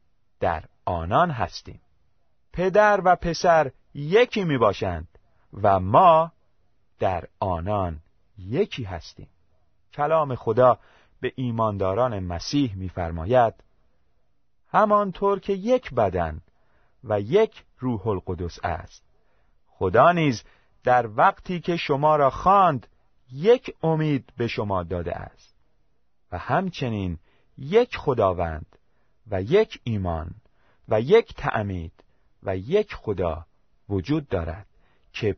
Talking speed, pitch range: 100 wpm, 90-150 Hz